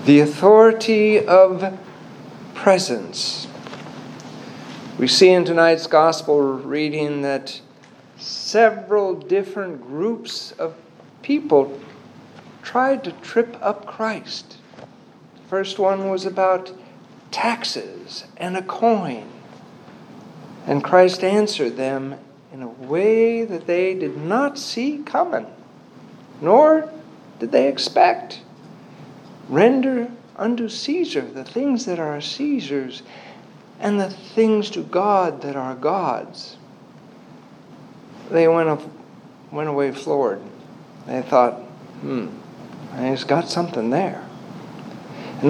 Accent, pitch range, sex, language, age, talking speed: American, 165-230 Hz, male, English, 60-79, 100 wpm